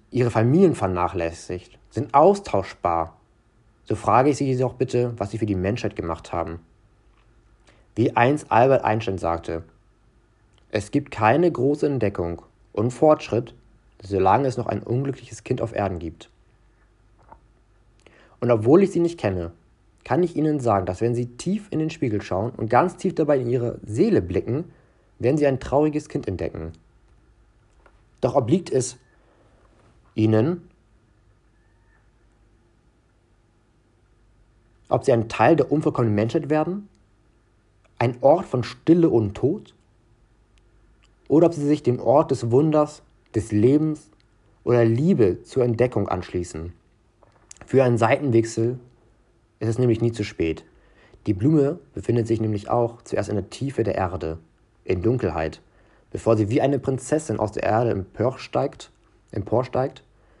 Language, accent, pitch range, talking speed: German, German, 105-130 Hz, 135 wpm